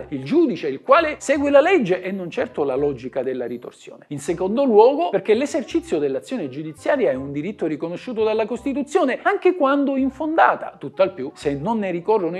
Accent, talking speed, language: native, 180 wpm, Italian